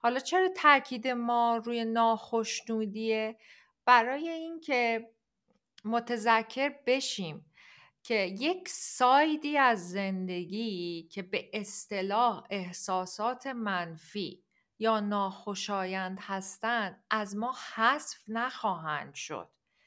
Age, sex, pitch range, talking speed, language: 50-69, female, 215-260 Hz, 85 wpm, Persian